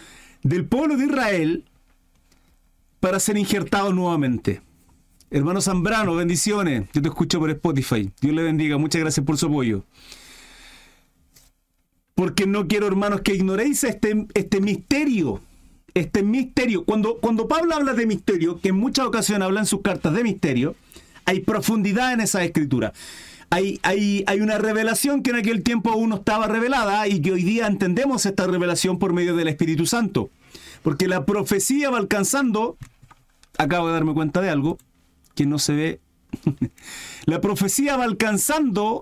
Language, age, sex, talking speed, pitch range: Spanish, 40-59, male, 155 wpm, 150-215 Hz